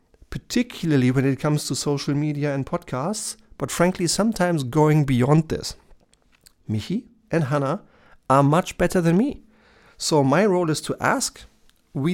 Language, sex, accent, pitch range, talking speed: German, male, German, 130-175 Hz, 150 wpm